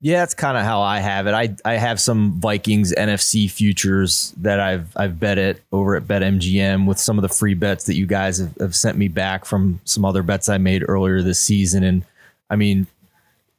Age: 20-39